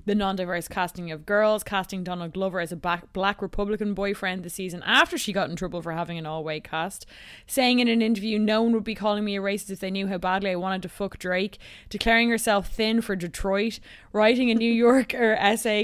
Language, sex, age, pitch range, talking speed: English, female, 20-39, 185-230 Hz, 215 wpm